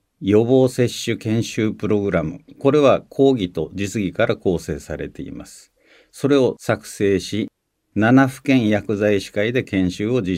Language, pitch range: Japanese, 90-125 Hz